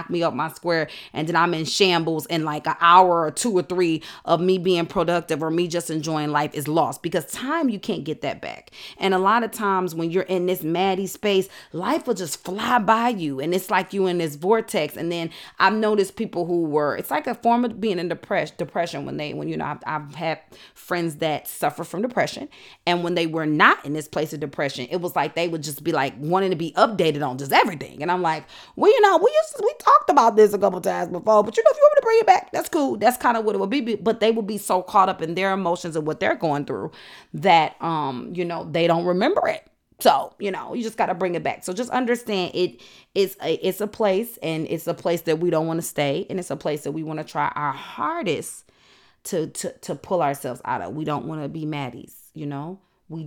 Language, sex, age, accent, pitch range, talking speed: English, female, 30-49, American, 155-200 Hz, 260 wpm